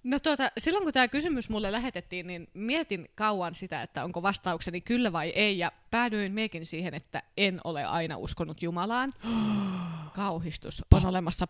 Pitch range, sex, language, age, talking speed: 165-200 Hz, female, Finnish, 20-39, 160 wpm